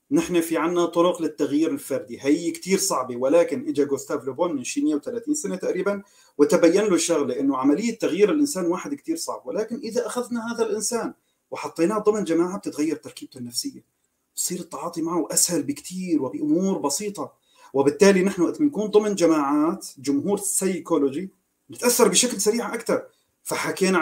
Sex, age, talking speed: male, 40-59, 145 wpm